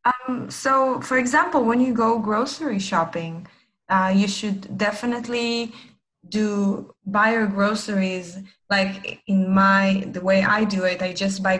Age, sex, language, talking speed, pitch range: 20-39, female, English, 140 wpm, 190-245 Hz